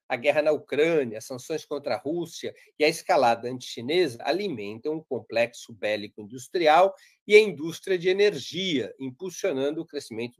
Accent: Brazilian